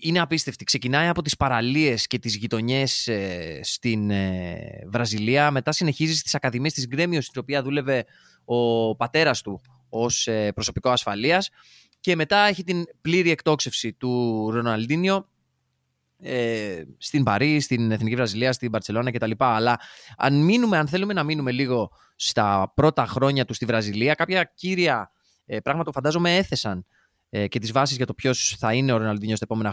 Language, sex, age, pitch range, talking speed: Greek, male, 20-39, 110-145 Hz, 155 wpm